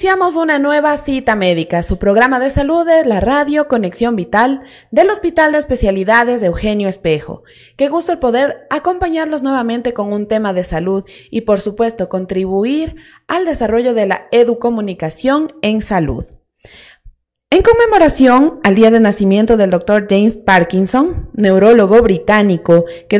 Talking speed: 145 wpm